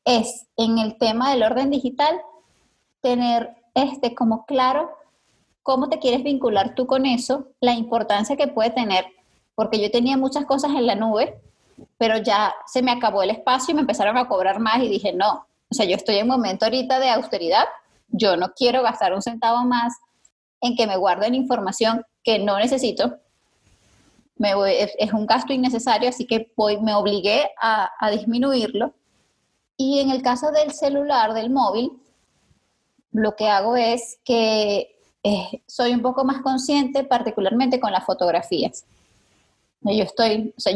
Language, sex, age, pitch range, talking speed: English, female, 20-39, 215-265 Hz, 170 wpm